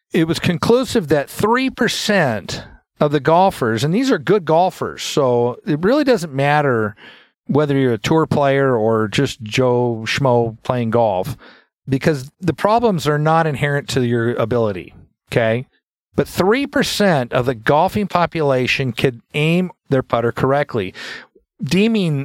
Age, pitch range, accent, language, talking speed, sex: 50-69, 120-160 Hz, American, English, 140 wpm, male